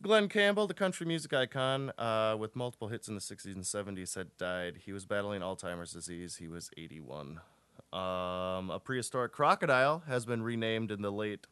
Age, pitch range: 20-39, 95-125 Hz